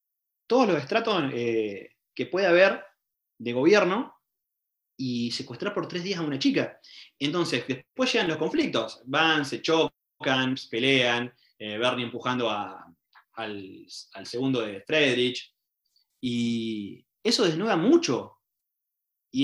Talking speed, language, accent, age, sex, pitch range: 125 wpm, Spanish, Argentinian, 30-49, male, 120-170 Hz